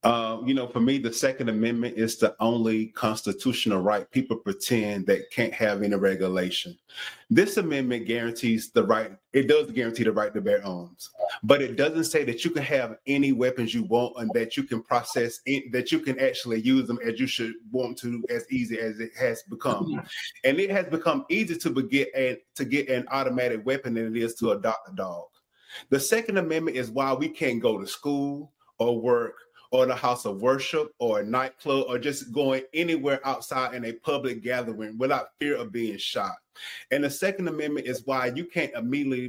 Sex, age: male, 30-49